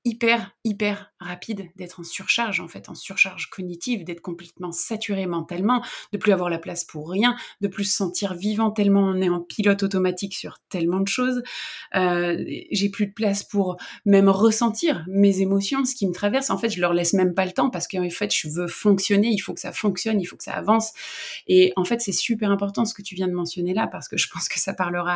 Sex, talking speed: female, 230 wpm